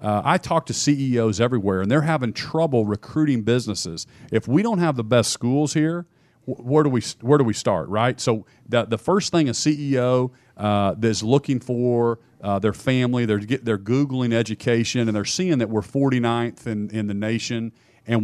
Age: 40-59